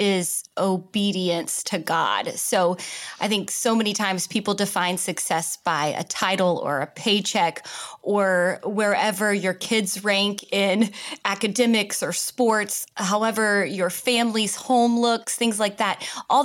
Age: 20-39